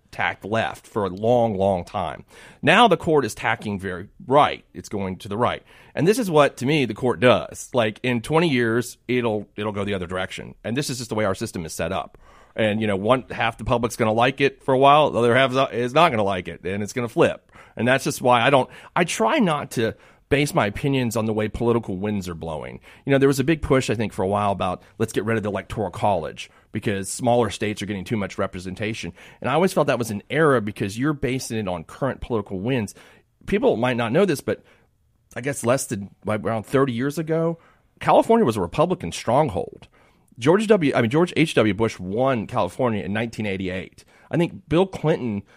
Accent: American